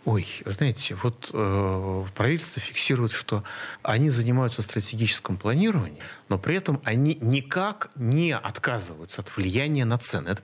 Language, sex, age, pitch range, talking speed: Russian, male, 30-49, 120-190 Hz, 140 wpm